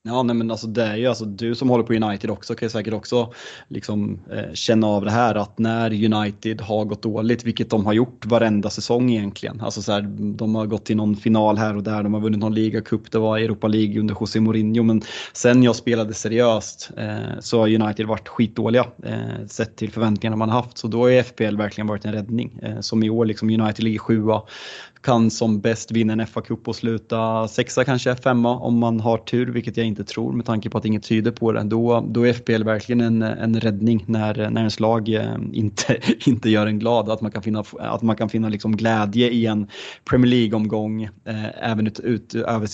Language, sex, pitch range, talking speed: Swedish, male, 110-115 Hz, 220 wpm